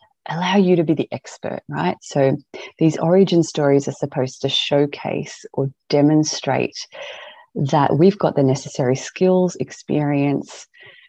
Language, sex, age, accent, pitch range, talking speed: English, female, 30-49, Australian, 135-165 Hz, 130 wpm